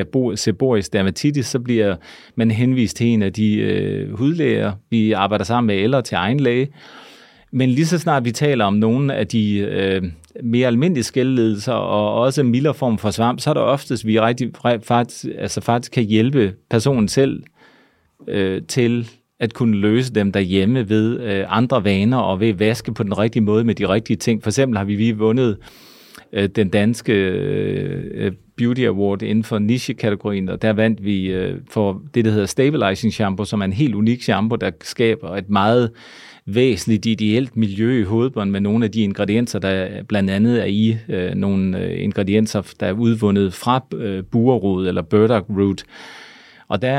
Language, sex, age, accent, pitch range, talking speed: Danish, male, 30-49, native, 100-120 Hz, 175 wpm